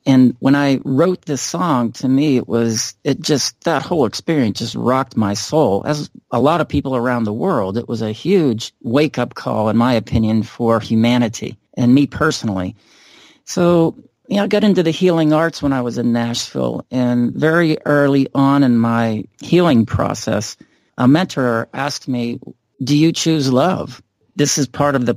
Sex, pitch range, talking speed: male, 120-145 Hz, 180 wpm